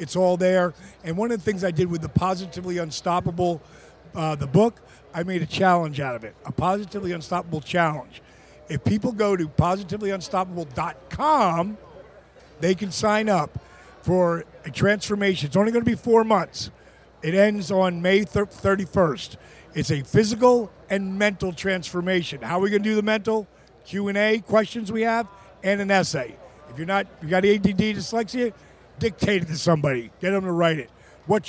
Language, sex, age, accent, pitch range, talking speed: English, male, 50-69, American, 170-210 Hz, 180 wpm